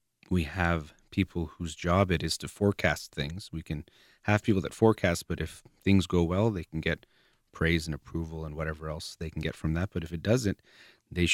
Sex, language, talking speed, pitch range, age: male, English, 210 wpm, 80-90 Hz, 30-49